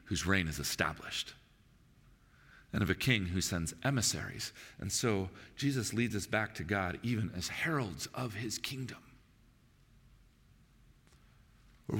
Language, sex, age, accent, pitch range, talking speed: English, male, 40-59, American, 115-145 Hz, 130 wpm